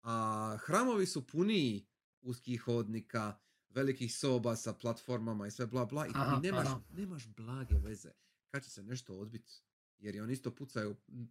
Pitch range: 115-155 Hz